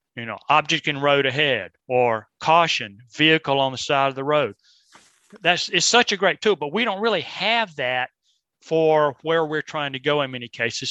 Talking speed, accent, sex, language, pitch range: 200 wpm, American, male, English, 135-165 Hz